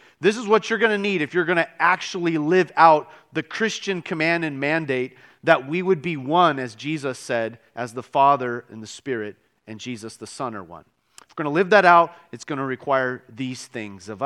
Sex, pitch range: male, 130-175 Hz